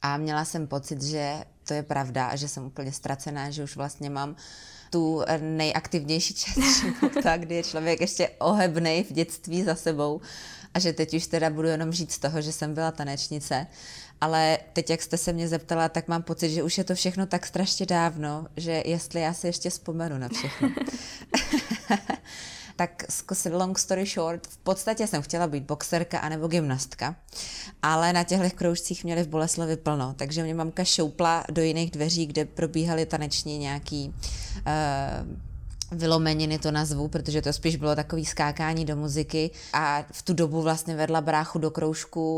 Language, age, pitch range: Czech, 20-39, 150-170 Hz